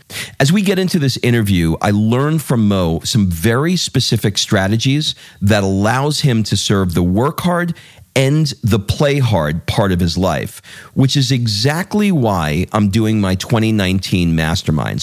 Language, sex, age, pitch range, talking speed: English, male, 40-59, 95-130 Hz, 155 wpm